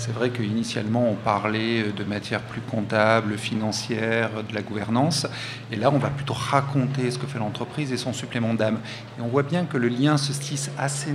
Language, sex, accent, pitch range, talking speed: French, male, French, 115-140 Hz, 200 wpm